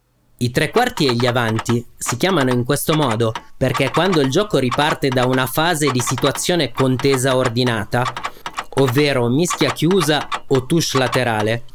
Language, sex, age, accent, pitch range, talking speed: Italian, male, 30-49, native, 130-160 Hz, 150 wpm